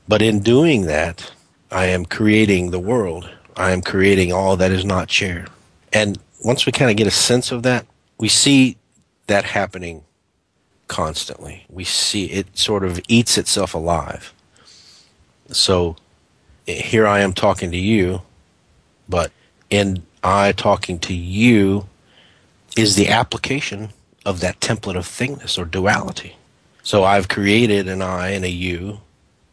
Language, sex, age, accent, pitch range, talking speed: English, male, 40-59, American, 90-105 Hz, 145 wpm